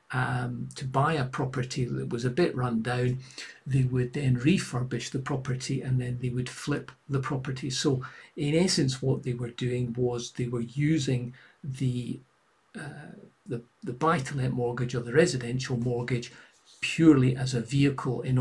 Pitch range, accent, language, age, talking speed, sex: 125-140 Hz, British, English, 50-69, 155 wpm, male